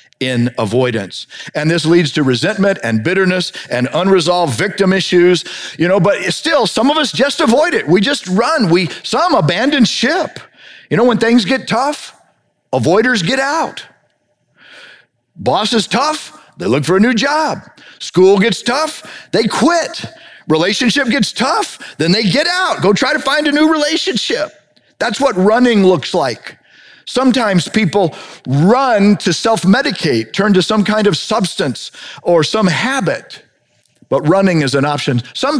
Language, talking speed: English, 155 wpm